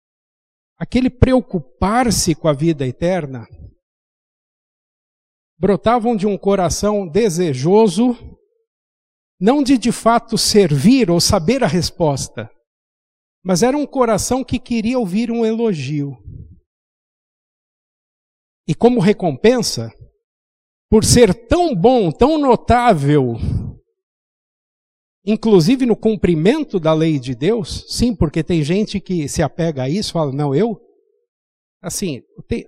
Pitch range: 165-240 Hz